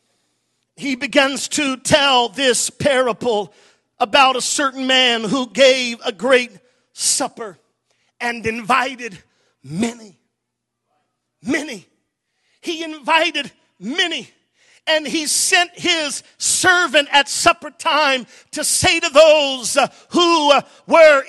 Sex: male